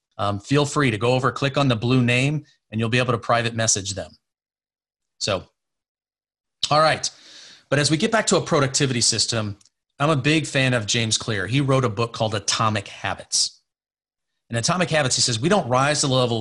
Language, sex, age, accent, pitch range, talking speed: English, male, 30-49, American, 110-140 Hz, 205 wpm